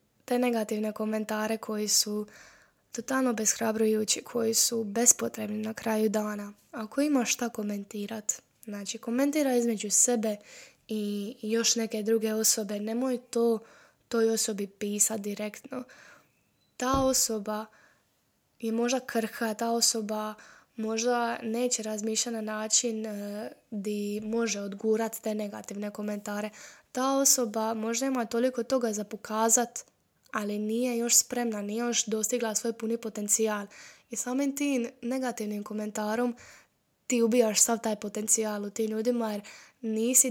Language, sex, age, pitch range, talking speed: Croatian, female, 20-39, 215-235 Hz, 125 wpm